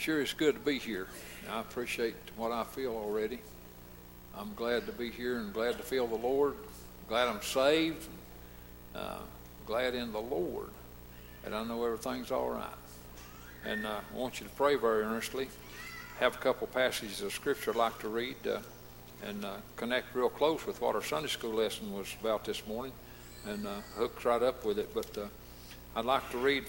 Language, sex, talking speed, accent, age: English, male, 195 wpm, American, 60-79